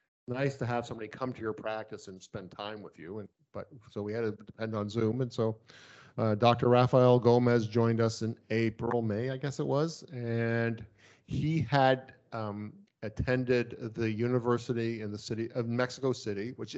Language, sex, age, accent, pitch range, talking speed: English, male, 40-59, American, 110-130 Hz, 180 wpm